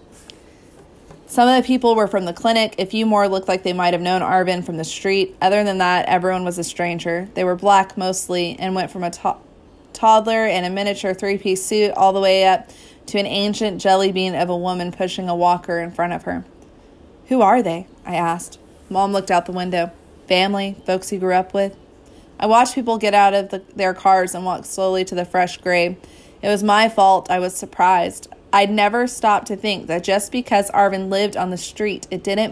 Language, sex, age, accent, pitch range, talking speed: English, female, 20-39, American, 180-205 Hz, 210 wpm